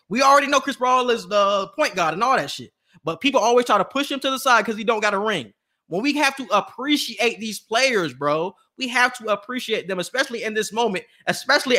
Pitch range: 165-235 Hz